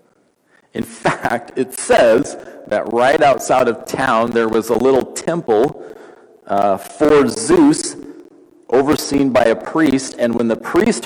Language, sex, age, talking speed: English, male, 40-59, 135 wpm